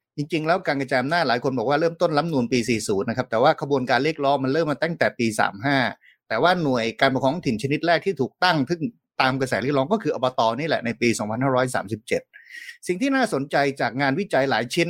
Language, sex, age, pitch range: Thai, male, 30-49, 130-170 Hz